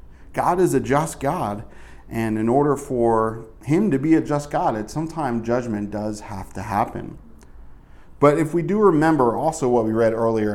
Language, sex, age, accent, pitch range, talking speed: English, male, 40-59, American, 105-135 Hz, 175 wpm